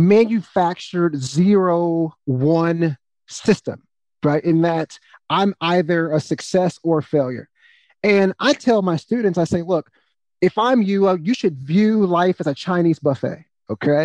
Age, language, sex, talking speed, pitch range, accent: 30-49, English, male, 145 wpm, 160-195 Hz, American